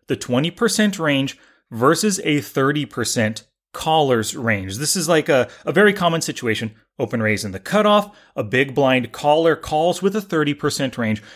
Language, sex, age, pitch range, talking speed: English, male, 30-49, 130-185 Hz, 160 wpm